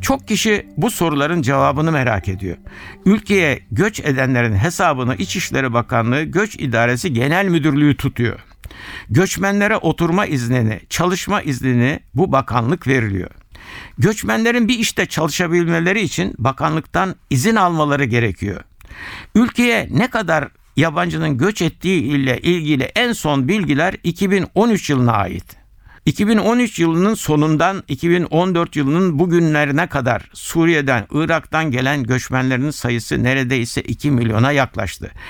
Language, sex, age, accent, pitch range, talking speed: Turkish, male, 60-79, native, 125-180 Hz, 110 wpm